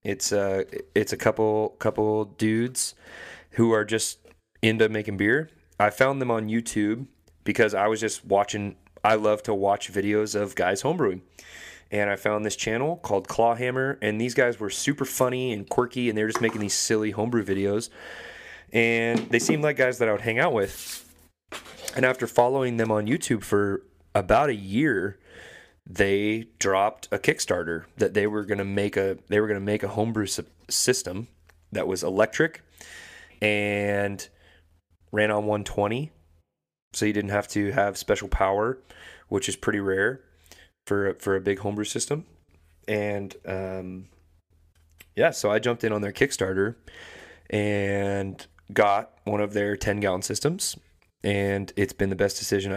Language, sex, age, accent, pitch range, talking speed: English, male, 30-49, American, 95-110 Hz, 165 wpm